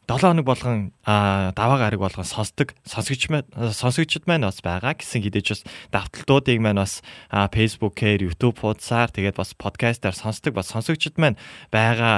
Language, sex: Korean, male